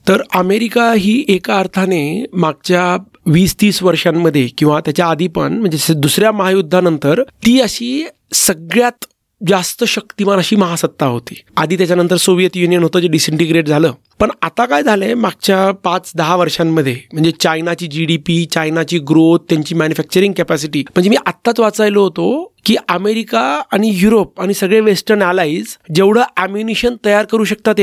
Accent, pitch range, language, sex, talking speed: native, 175-225 Hz, Marathi, male, 150 wpm